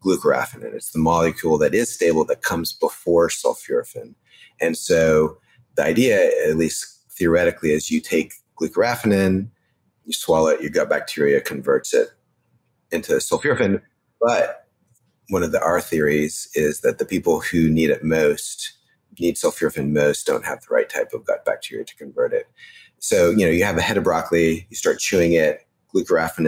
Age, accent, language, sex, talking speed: 30-49, American, English, male, 170 wpm